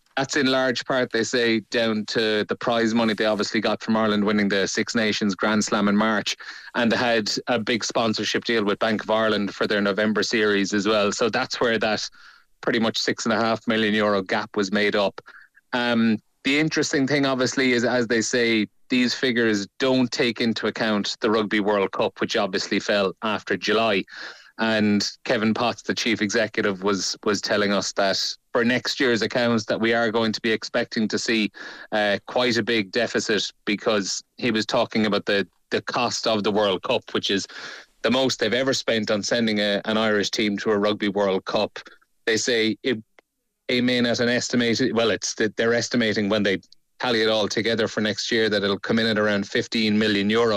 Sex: male